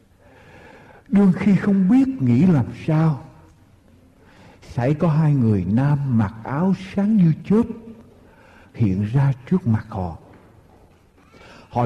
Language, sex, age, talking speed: Vietnamese, male, 60-79, 115 wpm